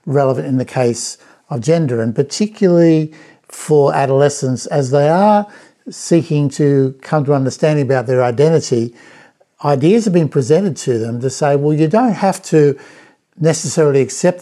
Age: 60-79